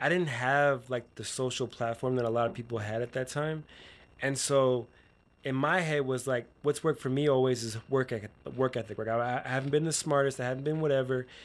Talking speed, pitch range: 220 wpm, 120-140 Hz